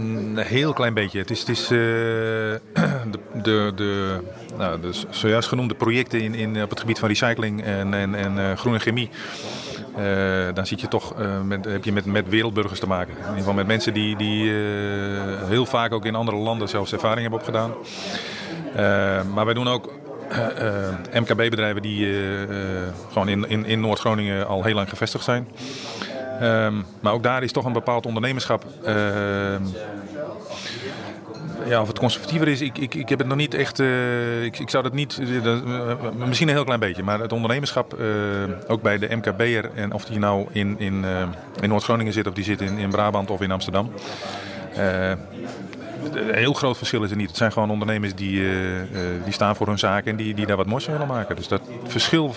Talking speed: 200 wpm